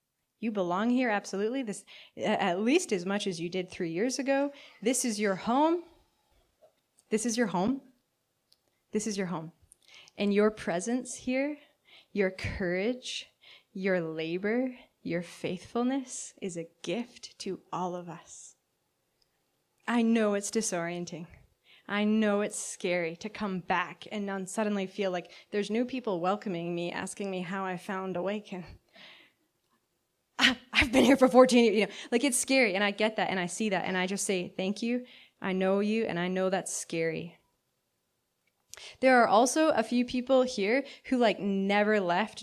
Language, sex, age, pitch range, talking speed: English, female, 20-39, 185-240 Hz, 160 wpm